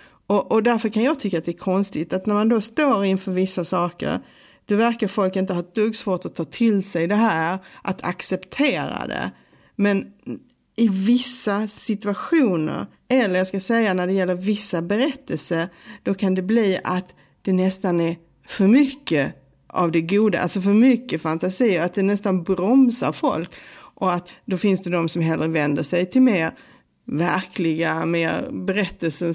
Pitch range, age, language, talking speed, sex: 175-230 Hz, 50-69, Swedish, 175 wpm, female